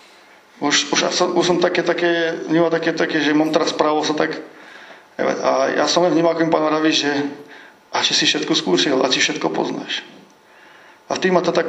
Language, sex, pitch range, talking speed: Slovak, male, 135-165 Hz, 205 wpm